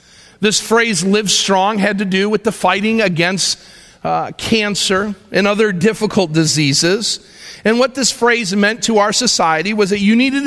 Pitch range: 155-220 Hz